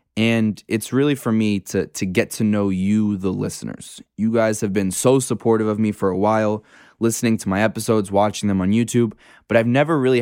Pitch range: 100-120 Hz